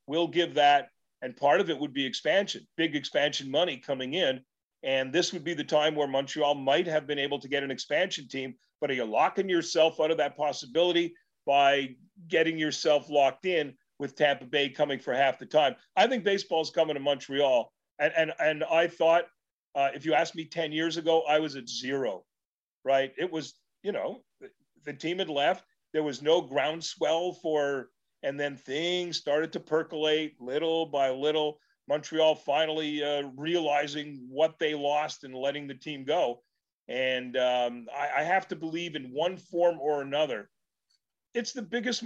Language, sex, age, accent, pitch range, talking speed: English, male, 40-59, American, 140-170 Hz, 180 wpm